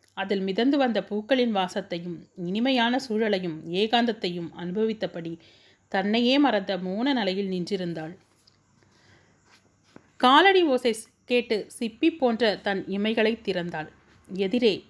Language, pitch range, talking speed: Tamil, 175-230 Hz, 90 wpm